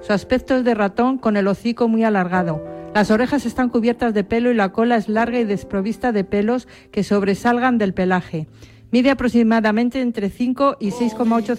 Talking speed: 180 wpm